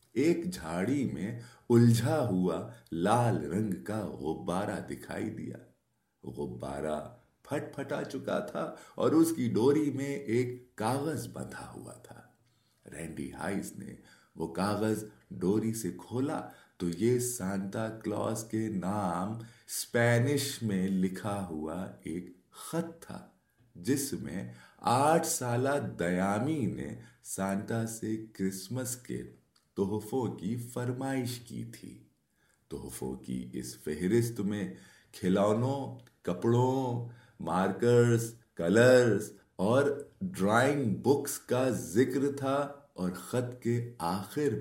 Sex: male